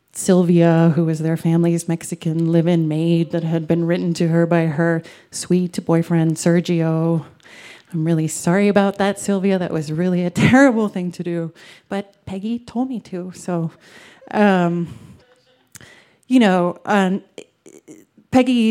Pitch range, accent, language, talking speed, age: 165-190 Hz, American, English, 145 wpm, 30-49